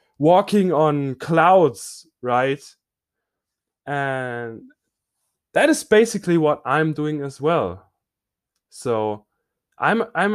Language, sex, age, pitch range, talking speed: English, male, 20-39, 125-190 Hz, 95 wpm